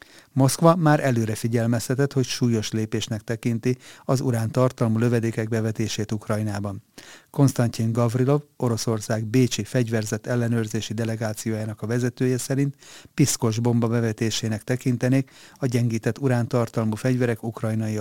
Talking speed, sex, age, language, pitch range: 105 wpm, male, 30-49, Hungarian, 110-130 Hz